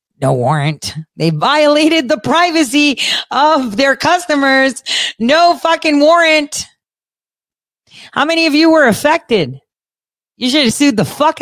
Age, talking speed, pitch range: 40-59, 125 wpm, 155-230 Hz